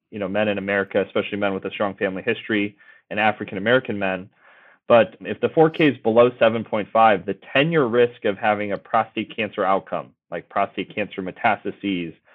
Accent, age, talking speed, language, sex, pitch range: American, 30-49, 170 wpm, English, male, 100-120 Hz